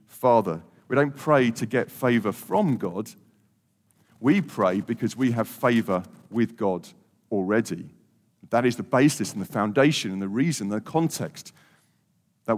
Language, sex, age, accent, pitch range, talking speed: English, male, 40-59, British, 115-160 Hz, 150 wpm